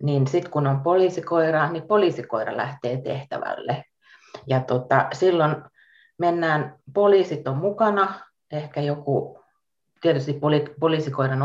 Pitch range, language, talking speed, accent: 135-160 Hz, Finnish, 110 wpm, native